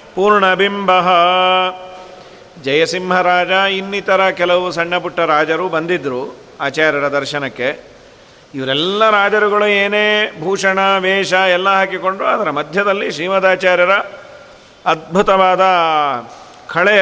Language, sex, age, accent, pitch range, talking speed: Kannada, male, 40-59, native, 180-200 Hz, 80 wpm